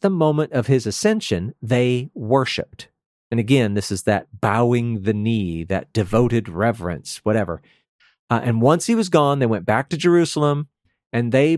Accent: American